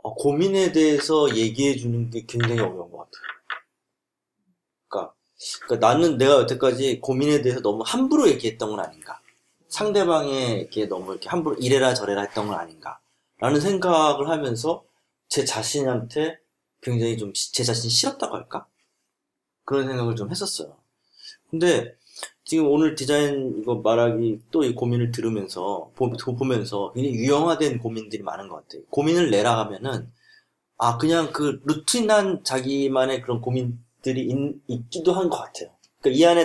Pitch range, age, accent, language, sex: 120-165 Hz, 30-49, native, Korean, male